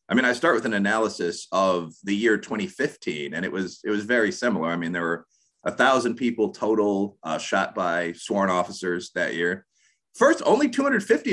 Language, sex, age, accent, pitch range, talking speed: English, male, 30-49, American, 90-145 Hz, 185 wpm